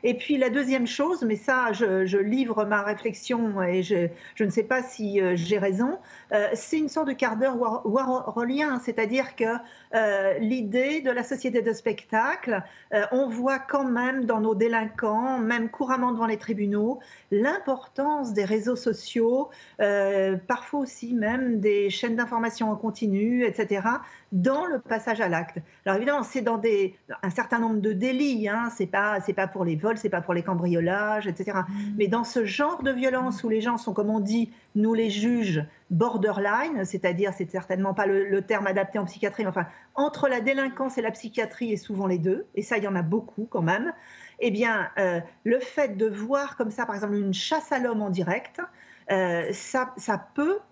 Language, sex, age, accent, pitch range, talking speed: French, female, 40-59, French, 200-255 Hz, 190 wpm